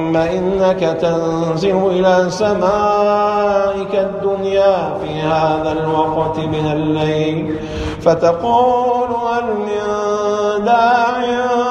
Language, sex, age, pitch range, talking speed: English, male, 50-69, 165-210 Hz, 65 wpm